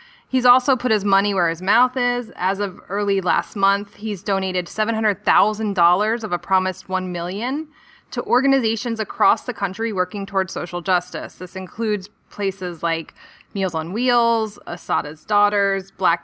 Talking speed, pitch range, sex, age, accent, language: 150 wpm, 185-250 Hz, female, 20-39, American, English